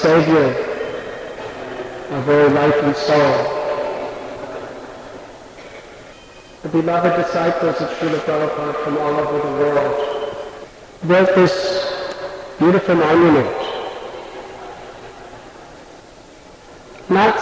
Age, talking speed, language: 50-69, 75 wpm, English